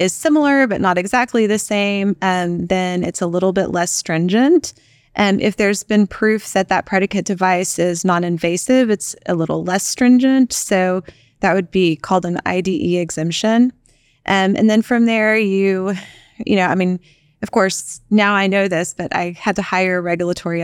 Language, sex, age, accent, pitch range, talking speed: English, female, 20-39, American, 175-205 Hz, 175 wpm